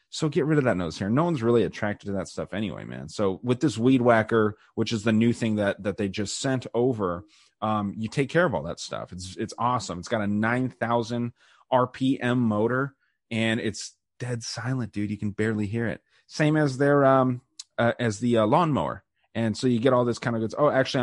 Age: 30-49